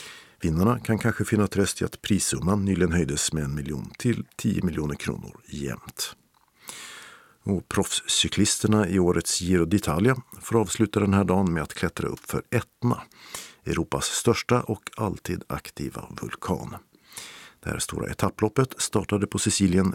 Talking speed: 145 wpm